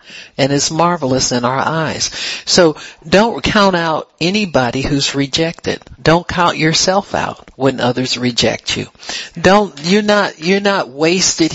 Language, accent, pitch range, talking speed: English, American, 130-160 Hz, 140 wpm